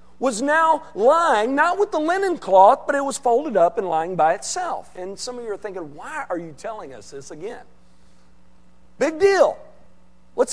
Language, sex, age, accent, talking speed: English, male, 50-69, American, 190 wpm